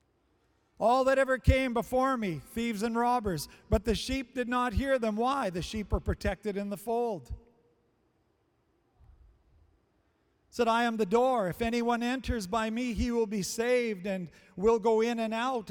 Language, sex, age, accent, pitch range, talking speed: English, male, 50-69, American, 220-250 Hz, 170 wpm